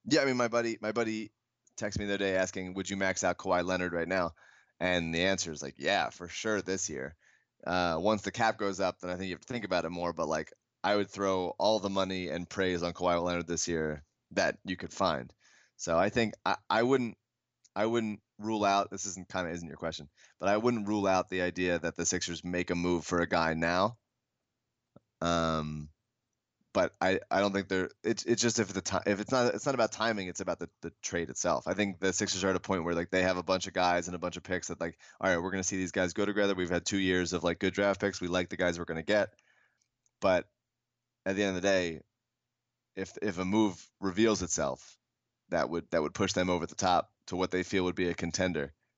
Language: English